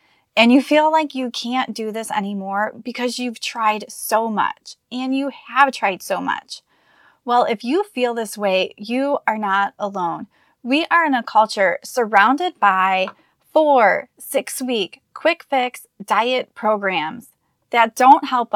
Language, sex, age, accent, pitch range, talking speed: English, female, 20-39, American, 210-260 Hz, 150 wpm